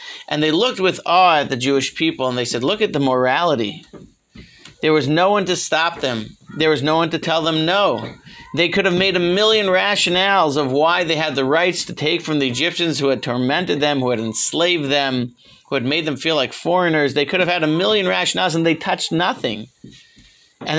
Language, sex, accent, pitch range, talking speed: English, male, American, 140-185 Hz, 220 wpm